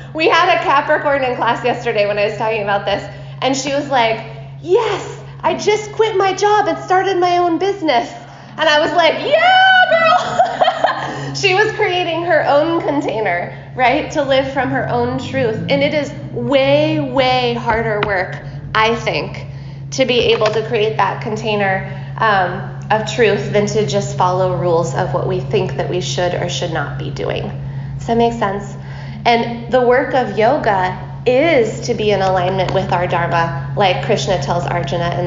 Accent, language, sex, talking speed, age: American, English, female, 180 wpm, 20-39